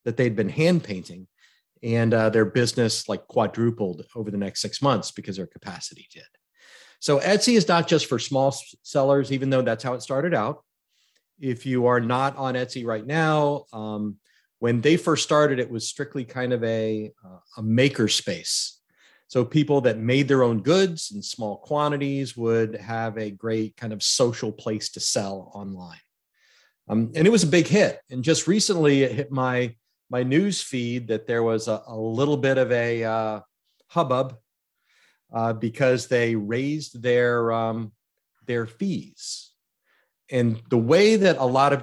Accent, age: American, 40-59